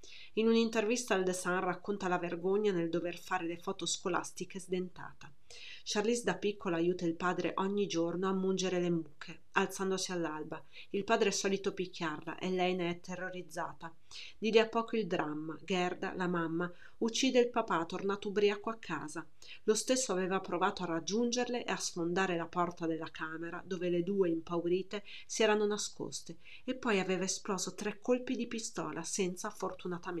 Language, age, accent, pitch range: Italian, 30-49, native, 170-210 Hz